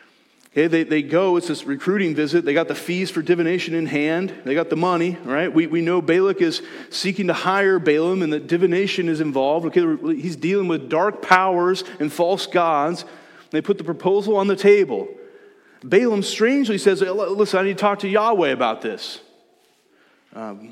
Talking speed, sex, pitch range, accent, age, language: 185 wpm, male, 165-230 Hz, American, 30-49, English